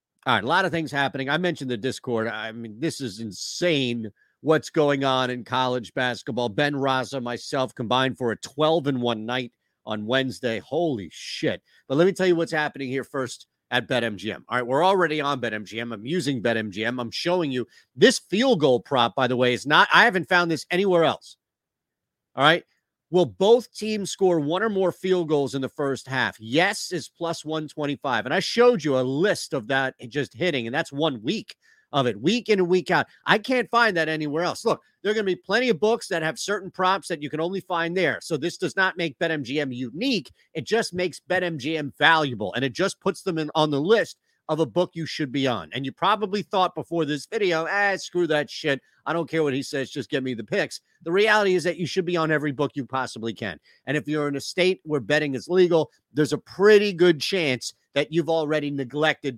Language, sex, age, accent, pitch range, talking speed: English, male, 40-59, American, 130-175 Hz, 220 wpm